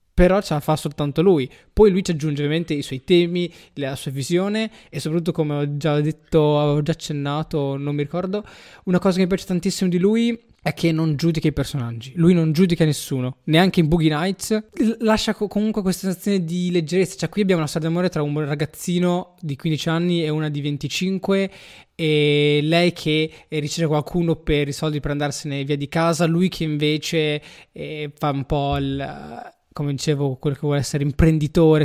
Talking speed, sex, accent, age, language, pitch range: 195 wpm, male, native, 20-39, Italian, 145-175 Hz